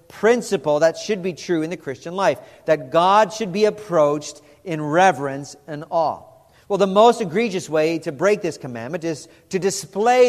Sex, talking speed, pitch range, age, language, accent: male, 175 wpm, 160-205 Hz, 40-59, English, American